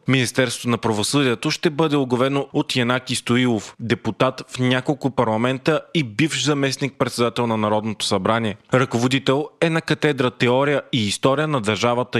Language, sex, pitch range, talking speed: Bulgarian, male, 120-145 Hz, 145 wpm